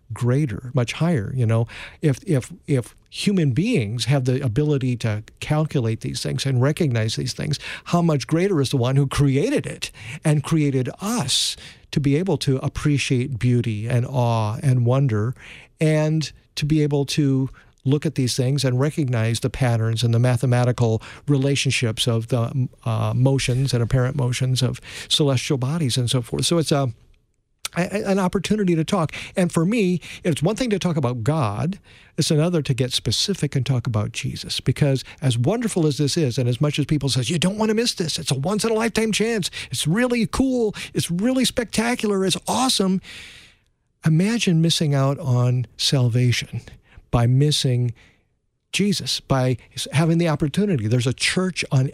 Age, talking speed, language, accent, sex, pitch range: 50-69, 170 wpm, English, American, male, 125-165 Hz